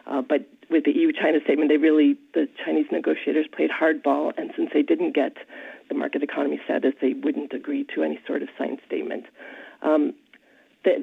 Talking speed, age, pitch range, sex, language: 180 wpm, 40-59, 155-250 Hz, female, English